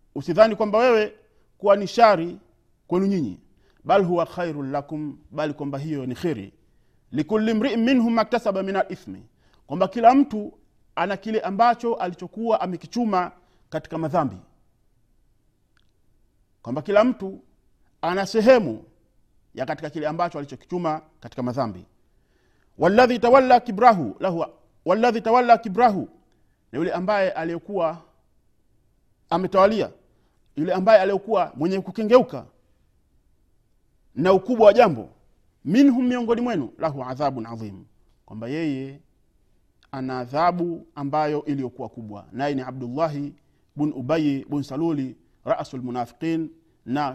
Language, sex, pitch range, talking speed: Swahili, male, 135-195 Hz, 110 wpm